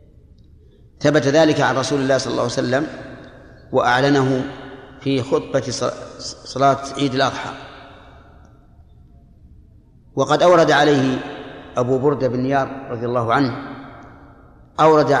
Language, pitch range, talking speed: Arabic, 130-150 Hz, 105 wpm